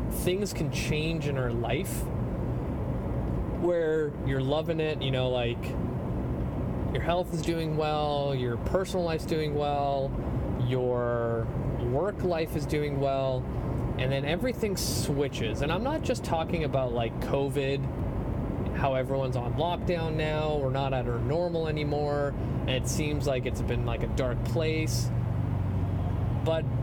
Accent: American